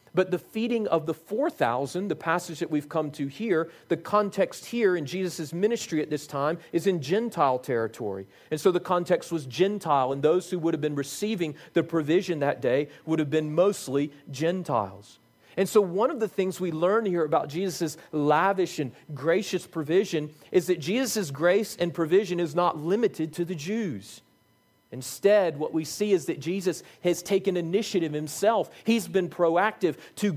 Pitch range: 145-185 Hz